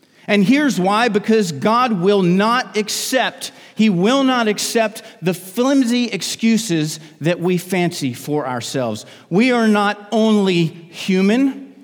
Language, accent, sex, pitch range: English, American, male, 135-210 Hz